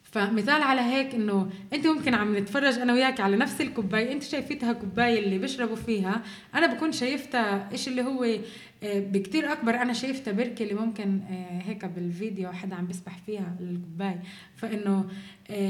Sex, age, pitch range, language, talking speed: female, 20-39, 200-250 Hz, Arabic, 150 wpm